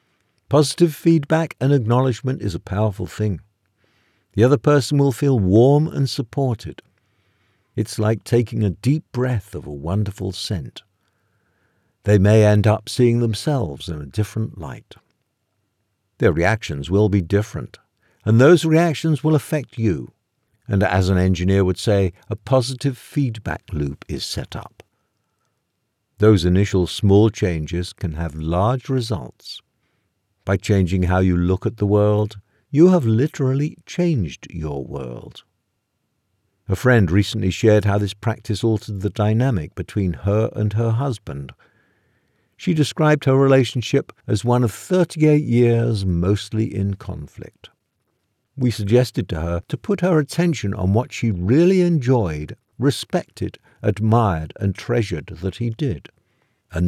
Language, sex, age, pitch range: English, male, 50-69, 95-130 Hz